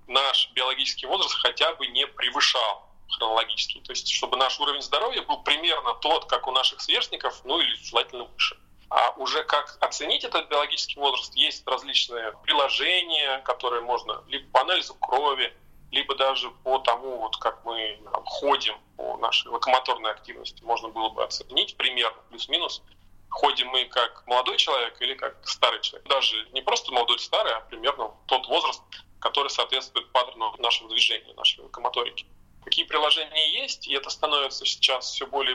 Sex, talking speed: male, 160 wpm